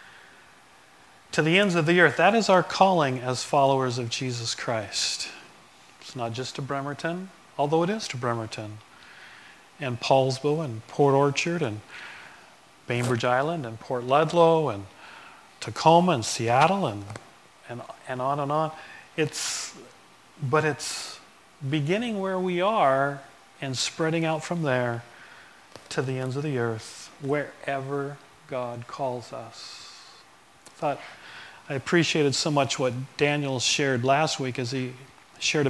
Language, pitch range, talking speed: English, 125-155 Hz, 140 wpm